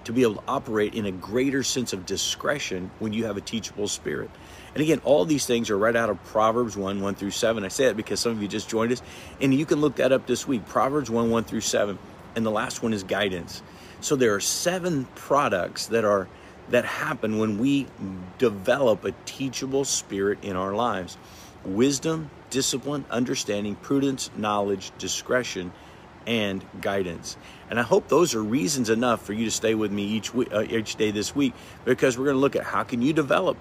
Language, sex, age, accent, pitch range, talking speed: English, male, 50-69, American, 95-125 Hz, 205 wpm